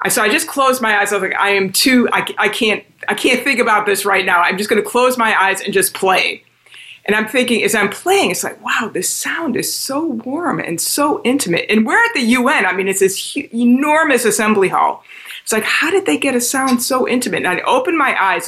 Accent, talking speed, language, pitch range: American, 245 wpm, English, 205-280 Hz